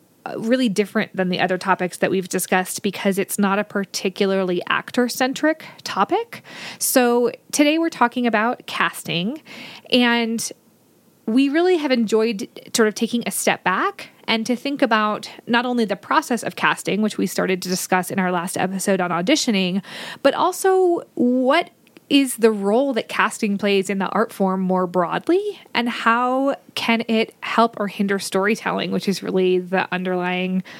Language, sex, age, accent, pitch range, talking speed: English, female, 20-39, American, 185-245 Hz, 160 wpm